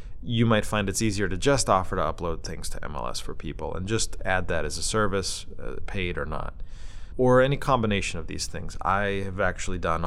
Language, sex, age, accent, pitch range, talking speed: English, male, 30-49, American, 90-110 Hz, 210 wpm